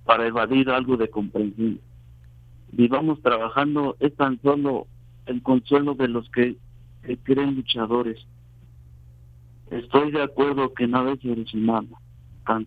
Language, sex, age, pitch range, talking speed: Spanish, male, 50-69, 120-135 Hz, 130 wpm